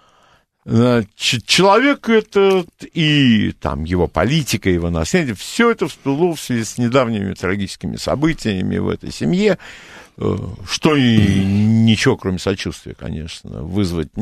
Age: 60-79